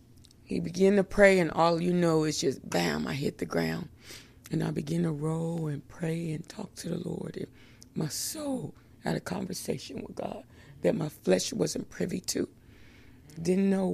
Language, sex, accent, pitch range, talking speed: English, female, American, 120-185 Hz, 185 wpm